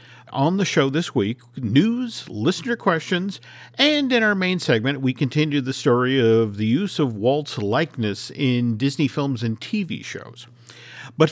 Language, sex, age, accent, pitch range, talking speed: English, male, 50-69, American, 115-160 Hz, 160 wpm